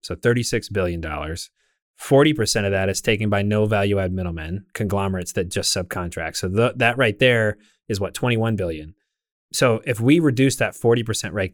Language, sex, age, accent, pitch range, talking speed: English, male, 30-49, American, 100-125 Hz, 200 wpm